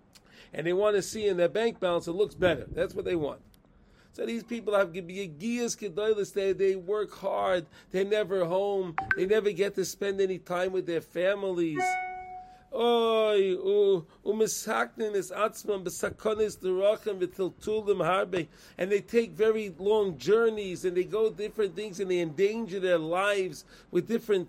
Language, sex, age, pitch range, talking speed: English, male, 40-59, 185-220 Hz, 130 wpm